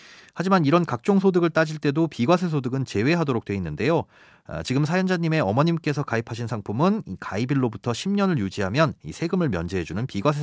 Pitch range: 110-160 Hz